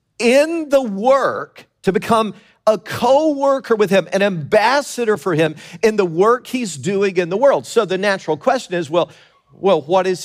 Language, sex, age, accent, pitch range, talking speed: English, male, 50-69, American, 125-205 Hz, 175 wpm